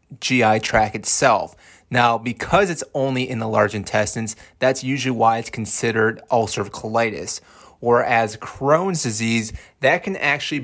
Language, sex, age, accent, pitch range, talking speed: English, male, 30-49, American, 110-130 Hz, 140 wpm